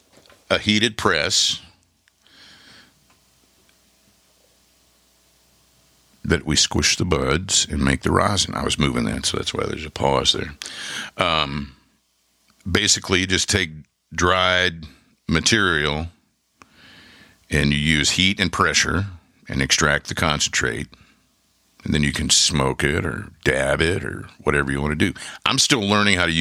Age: 50-69